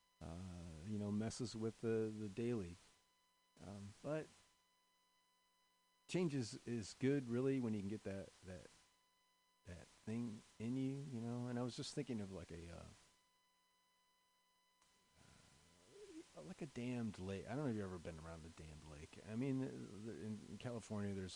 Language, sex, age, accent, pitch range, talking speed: English, male, 40-59, American, 95-140 Hz, 165 wpm